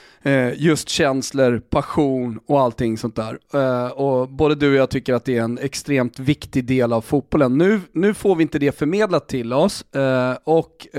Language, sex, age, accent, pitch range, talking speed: Swedish, male, 30-49, native, 125-155 Hz, 175 wpm